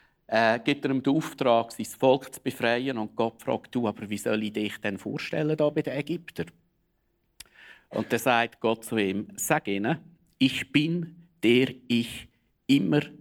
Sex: male